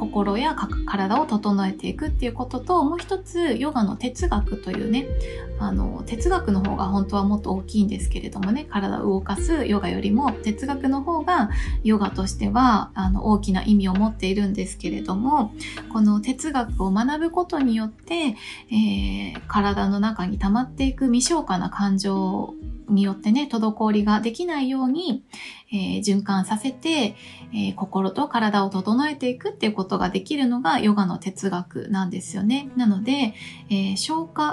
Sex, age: female, 20-39